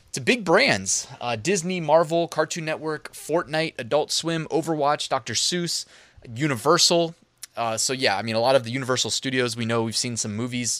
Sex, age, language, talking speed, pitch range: male, 20-39, English, 180 wpm, 115-150 Hz